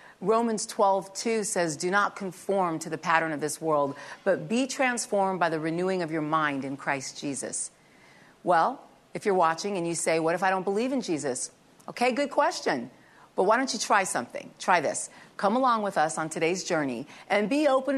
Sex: female